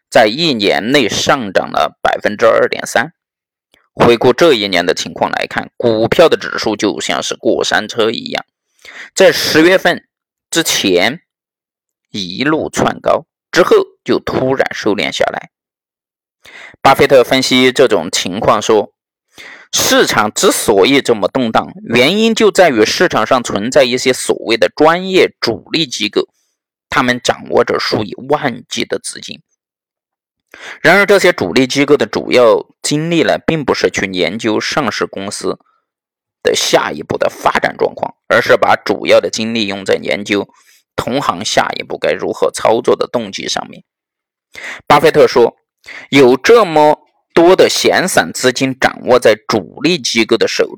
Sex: male